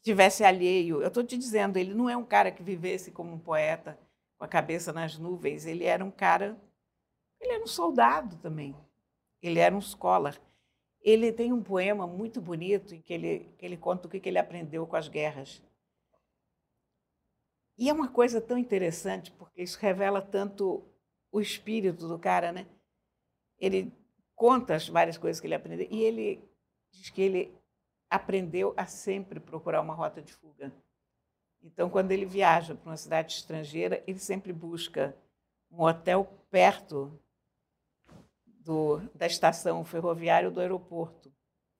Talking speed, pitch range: 160 wpm, 165-205 Hz